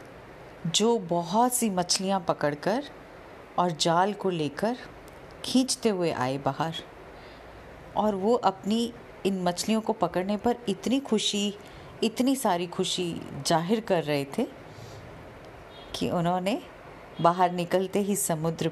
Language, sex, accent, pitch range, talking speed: Hindi, female, native, 155-215 Hz, 115 wpm